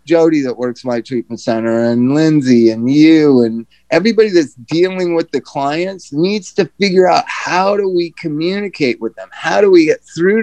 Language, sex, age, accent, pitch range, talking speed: English, male, 30-49, American, 130-180 Hz, 185 wpm